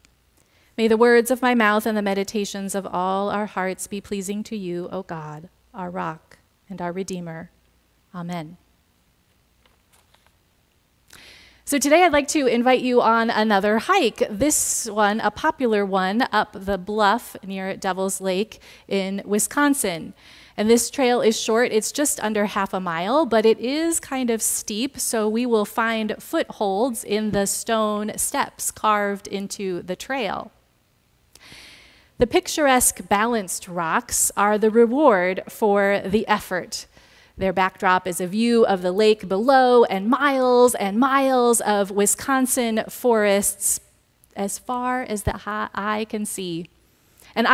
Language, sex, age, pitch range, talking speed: English, female, 30-49, 190-235 Hz, 140 wpm